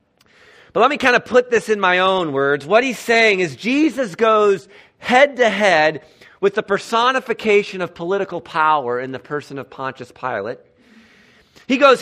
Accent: American